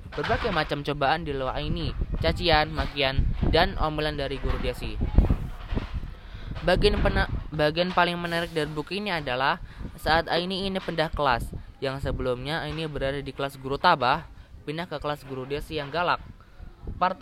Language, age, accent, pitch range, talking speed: Indonesian, 20-39, native, 130-160 Hz, 150 wpm